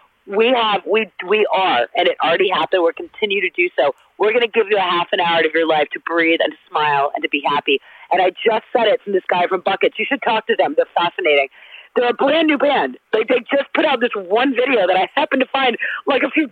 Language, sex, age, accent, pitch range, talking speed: English, female, 40-59, American, 200-310 Hz, 265 wpm